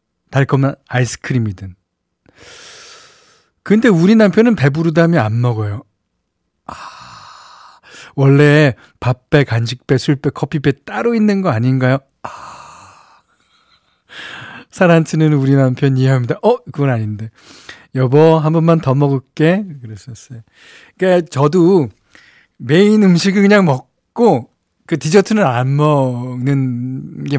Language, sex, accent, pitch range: Korean, male, native, 130-195 Hz